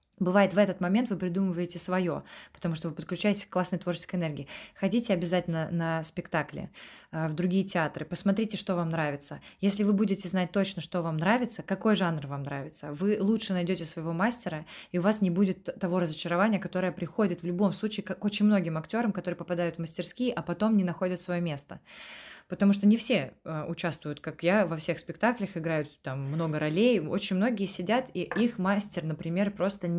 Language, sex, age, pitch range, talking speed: Russian, female, 20-39, 170-210 Hz, 185 wpm